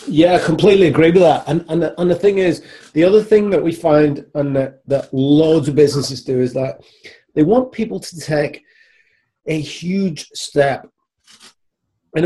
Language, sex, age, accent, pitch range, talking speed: English, male, 30-49, British, 130-165 Hz, 170 wpm